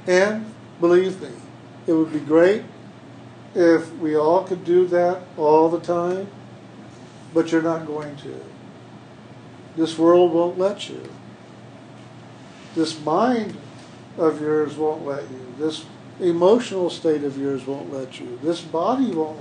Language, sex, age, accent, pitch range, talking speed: English, male, 60-79, American, 155-190 Hz, 135 wpm